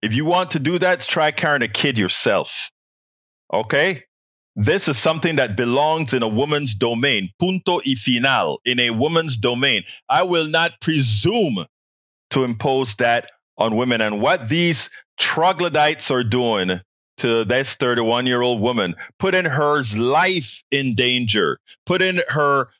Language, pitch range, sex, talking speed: English, 115-150 Hz, male, 140 wpm